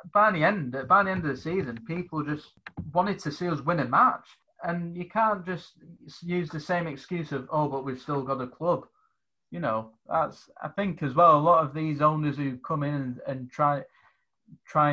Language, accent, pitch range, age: English, British, 130-160 Hz, 20-39